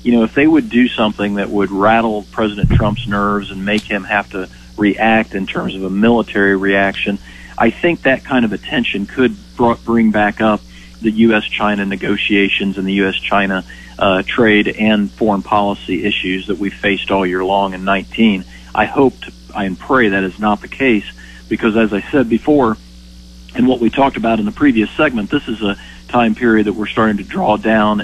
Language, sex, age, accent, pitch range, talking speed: English, male, 40-59, American, 95-115 Hz, 190 wpm